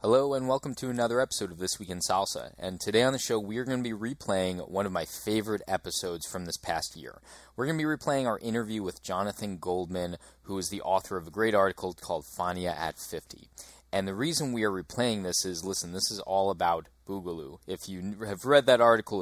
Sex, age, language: male, 20-39, English